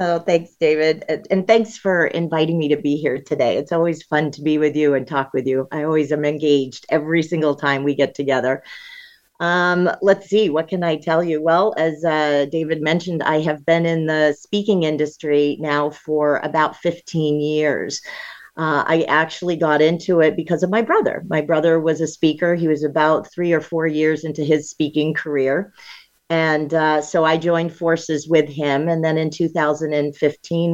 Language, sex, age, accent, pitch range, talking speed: English, female, 40-59, American, 150-175 Hz, 190 wpm